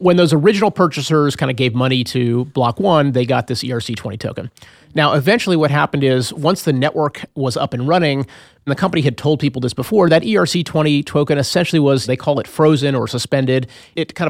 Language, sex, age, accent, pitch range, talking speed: English, male, 30-49, American, 125-150 Hz, 205 wpm